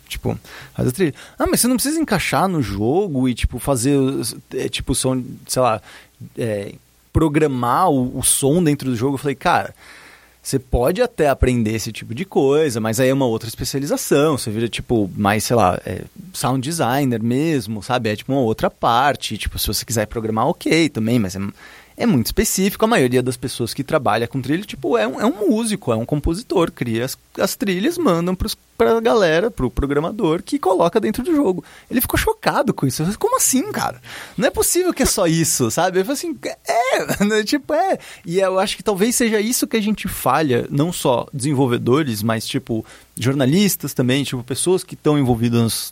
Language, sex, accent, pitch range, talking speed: Portuguese, male, Brazilian, 120-185 Hz, 195 wpm